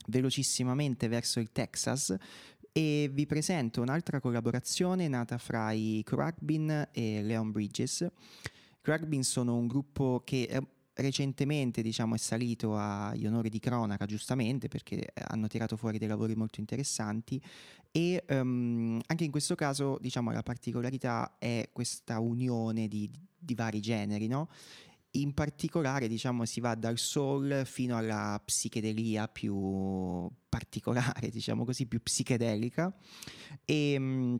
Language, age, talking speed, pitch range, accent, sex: Italian, 20-39, 125 wpm, 110-140 Hz, native, male